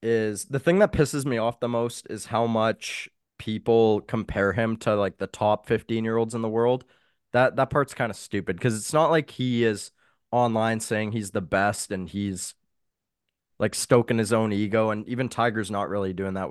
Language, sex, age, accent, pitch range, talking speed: English, male, 20-39, American, 95-115 Hz, 195 wpm